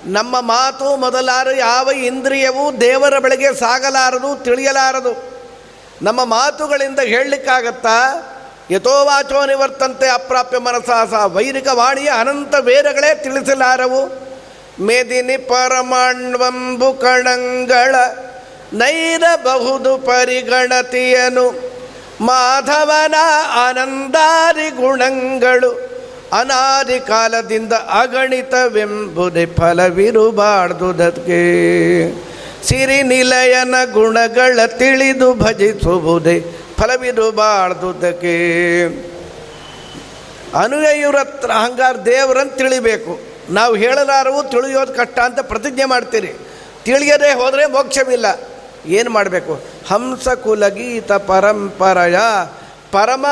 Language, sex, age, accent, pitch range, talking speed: Kannada, male, 50-69, native, 230-270 Hz, 70 wpm